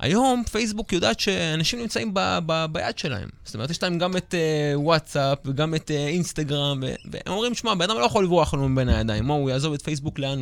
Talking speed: 230 wpm